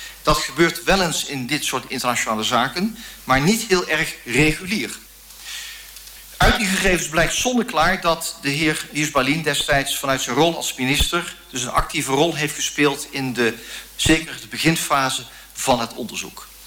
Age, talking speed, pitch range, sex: 50-69, 155 wpm, 135-175 Hz, male